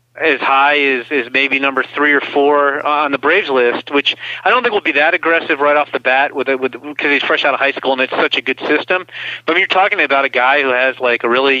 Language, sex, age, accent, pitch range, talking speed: English, male, 40-59, American, 135-170 Hz, 270 wpm